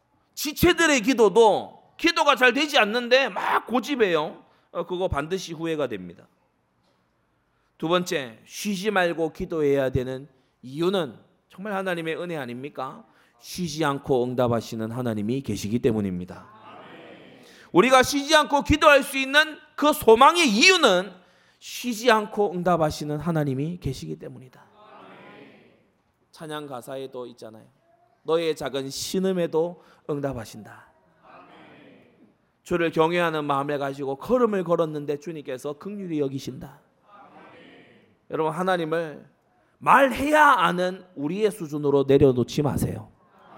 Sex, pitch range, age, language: male, 135-185 Hz, 30-49, Korean